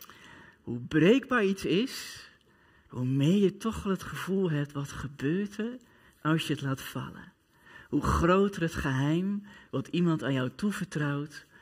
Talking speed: 145 wpm